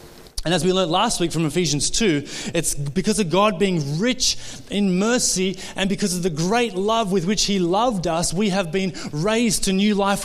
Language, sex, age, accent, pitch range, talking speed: English, male, 30-49, Australian, 150-200 Hz, 205 wpm